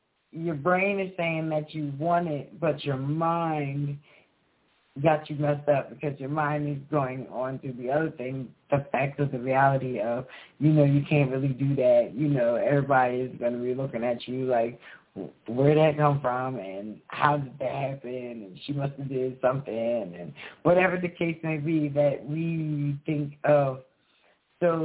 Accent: American